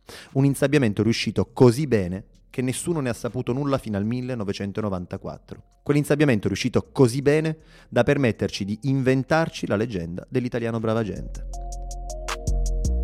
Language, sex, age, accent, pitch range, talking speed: Italian, male, 30-49, native, 100-130 Hz, 125 wpm